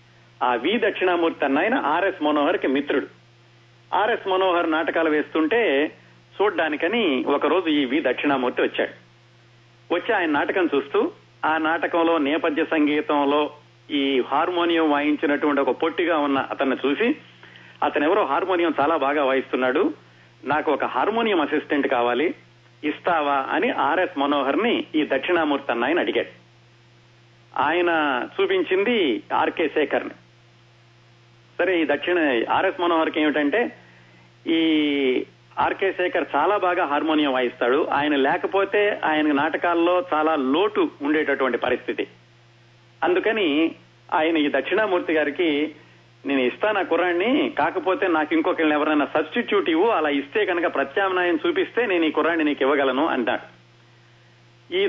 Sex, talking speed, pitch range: male, 115 wpm, 130-180 Hz